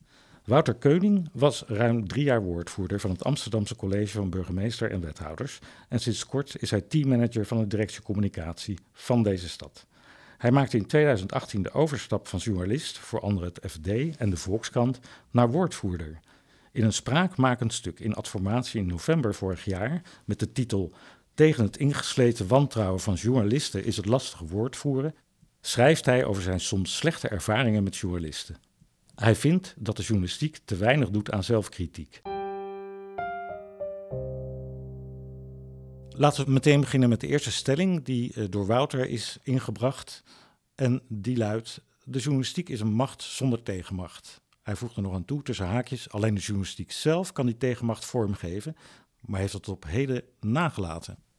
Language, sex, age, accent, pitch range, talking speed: Dutch, male, 50-69, Dutch, 100-135 Hz, 155 wpm